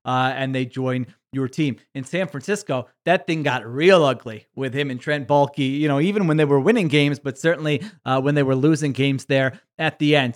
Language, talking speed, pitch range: English, 225 wpm, 135-165 Hz